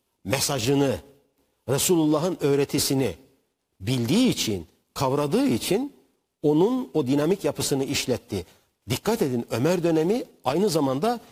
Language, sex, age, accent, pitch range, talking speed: Turkish, male, 60-79, native, 125-175 Hz, 95 wpm